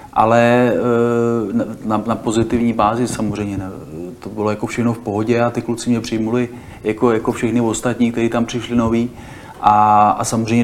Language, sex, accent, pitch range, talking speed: Czech, male, native, 110-120 Hz, 165 wpm